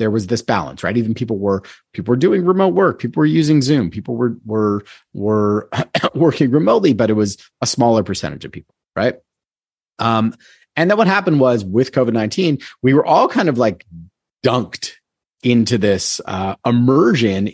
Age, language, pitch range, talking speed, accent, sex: 30-49, English, 100-135 Hz, 175 wpm, American, male